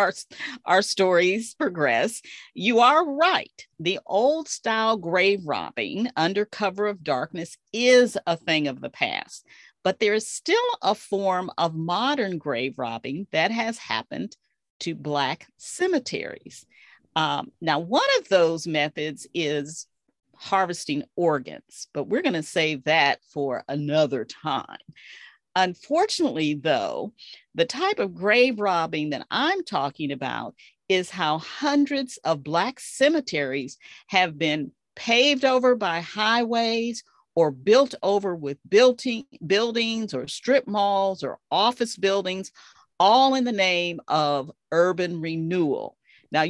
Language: English